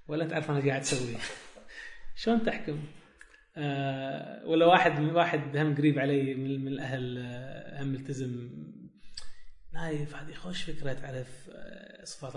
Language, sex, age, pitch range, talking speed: Arabic, male, 20-39, 135-165 Hz, 120 wpm